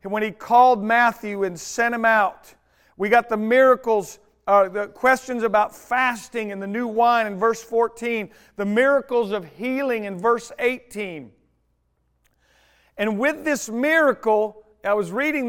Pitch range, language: 200-255 Hz, English